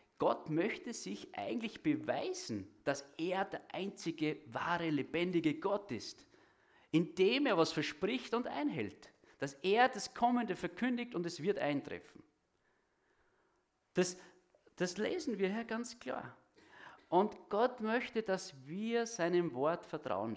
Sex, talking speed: male, 125 wpm